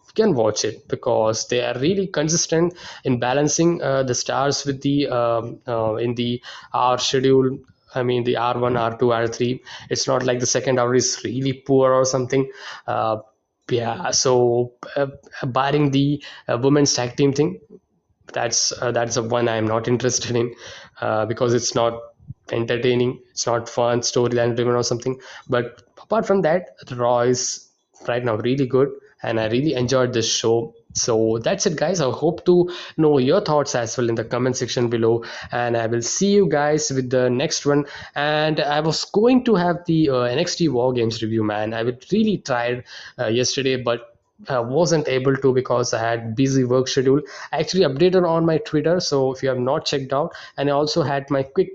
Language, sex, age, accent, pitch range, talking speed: English, male, 20-39, Indian, 120-145 Hz, 190 wpm